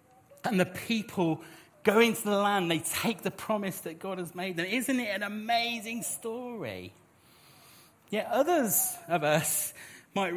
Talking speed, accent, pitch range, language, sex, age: 150 wpm, British, 165-205 Hz, English, male, 40-59